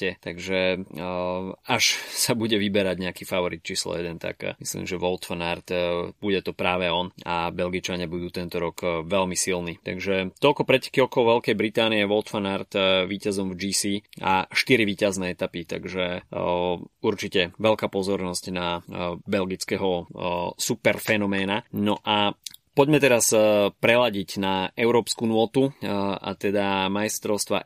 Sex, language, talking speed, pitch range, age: male, Slovak, 140 wpm, 90-105 Hz, 20-39